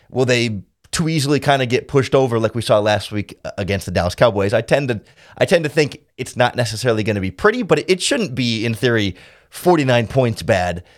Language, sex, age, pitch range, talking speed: English, male, 30-49, 105-135 Hz, 230 wpm